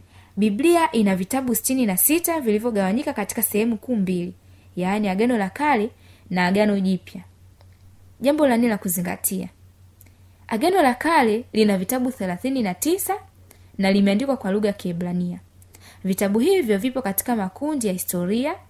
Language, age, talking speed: Swahili, 20-39, 125 wpm